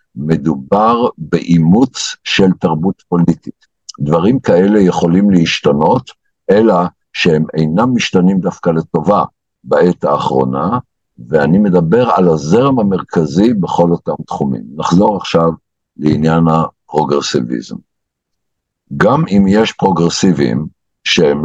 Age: 60-79